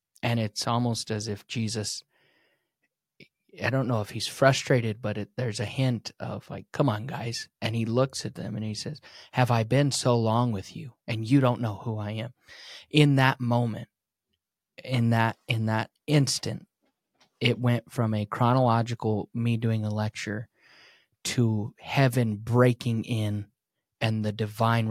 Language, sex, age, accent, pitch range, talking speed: English, male, 20-39, American, 110-130 Hz, 165 wpm